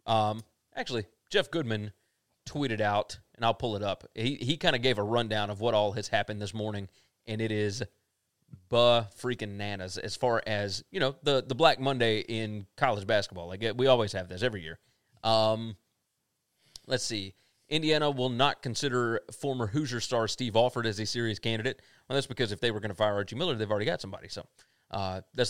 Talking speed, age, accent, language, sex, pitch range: 195 wpm, 30-49, American, English, male, 110-130 Hz